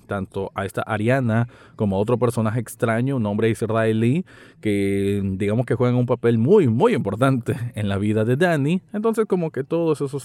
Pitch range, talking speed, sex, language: 110-155 Hz, 180 wpm, male, Spanish